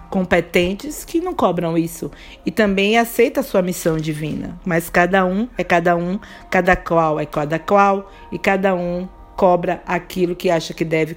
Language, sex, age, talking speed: Portuguese, female, 50-69, 170 wpm